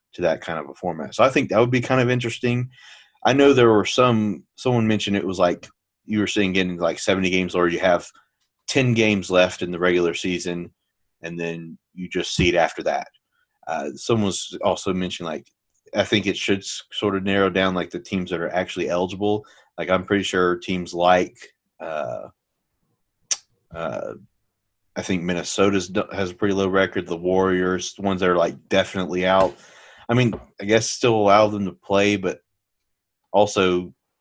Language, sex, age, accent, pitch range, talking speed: English, male, 30-49, American, 90-100 Hz, 185 wpm